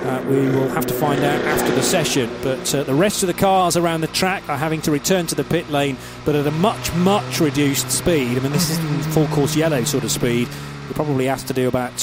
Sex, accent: male, British